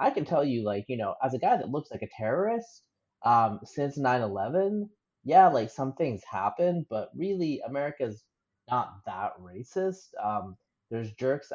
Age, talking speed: 30-49, 165 wpm